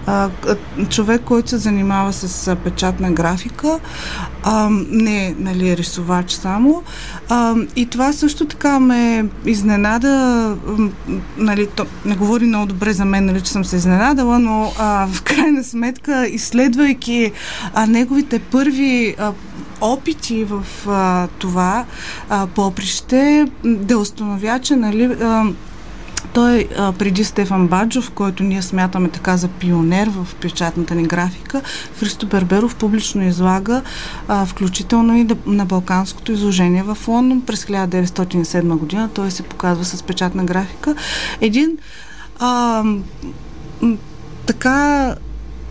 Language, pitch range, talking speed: Bulgarian, 185-245 Hz, 115 wpm